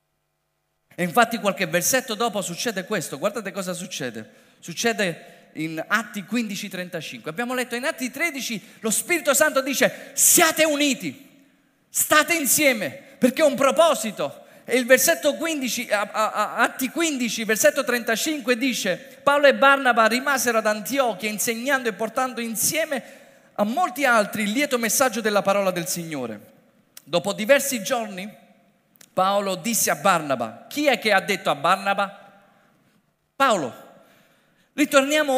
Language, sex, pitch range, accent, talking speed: Italian, male, 180-255 Hz, native, 130 wpm